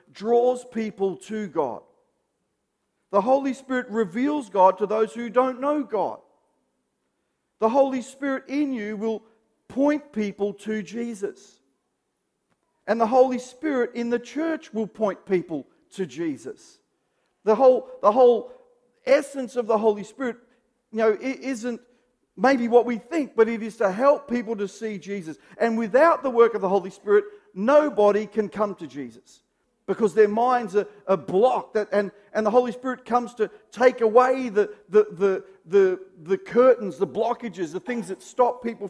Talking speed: 160 wpm